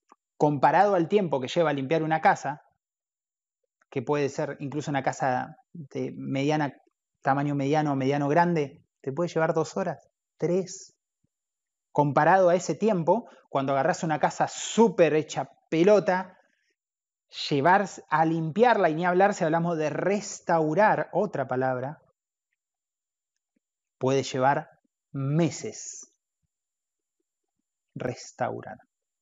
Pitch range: 145-205 Hz